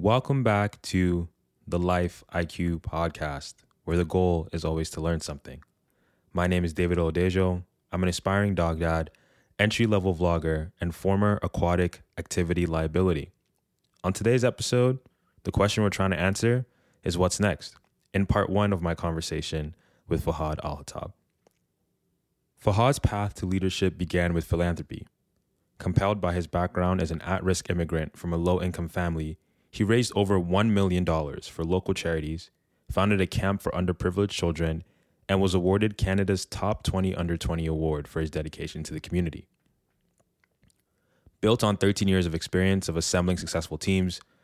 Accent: American